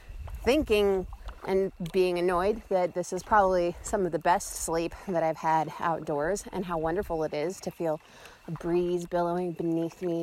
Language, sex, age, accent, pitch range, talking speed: English, female, 30-49, American, 170-220 Hz, 170 wpm